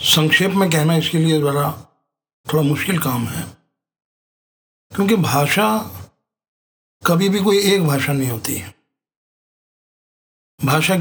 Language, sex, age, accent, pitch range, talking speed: Hindi, male, 50-69, native, 140-165 Hz, 110 wpm